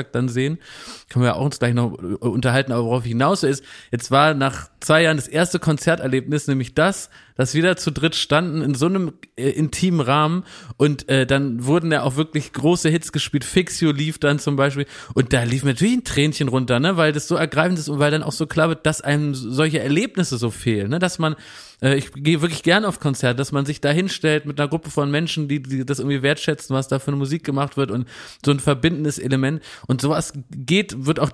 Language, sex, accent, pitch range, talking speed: German, male, German, 135-160 Hz, 230 wpm